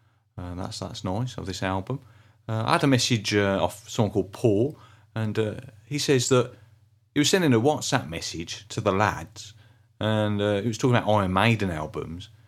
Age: 40-59